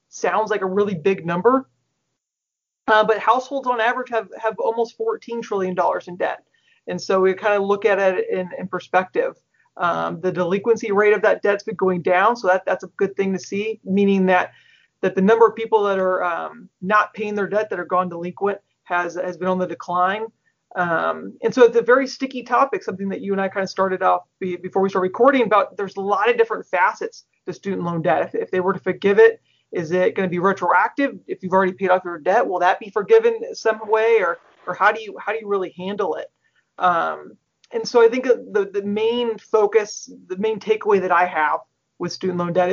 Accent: American